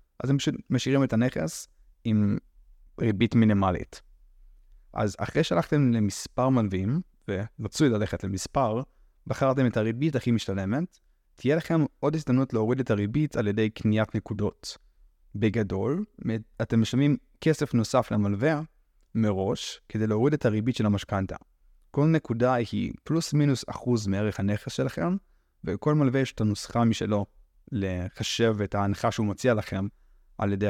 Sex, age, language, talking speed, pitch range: male, 20-39, Hebrew, 135 wpm, 100-130 Hz